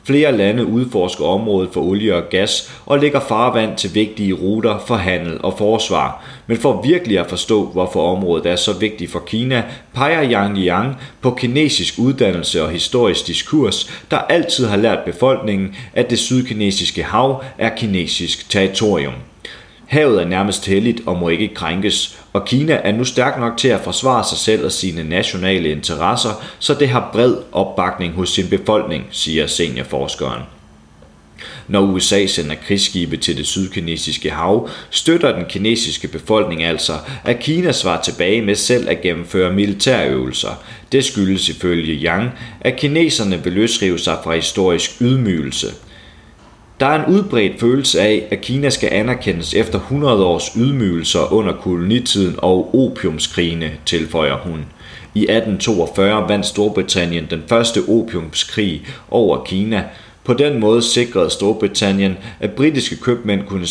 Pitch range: 90-120 Hz